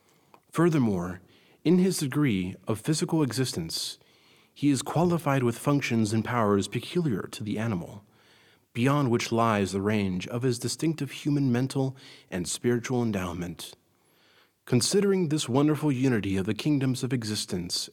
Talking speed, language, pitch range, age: 135 wpm, English, 105-145 Hz, 40-59